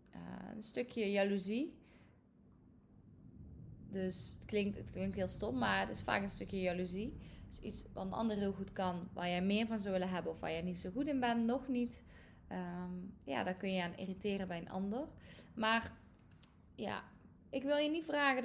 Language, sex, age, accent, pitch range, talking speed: Dutch, female, 20-39, Dutch, 195-235 Hz, 195 wpm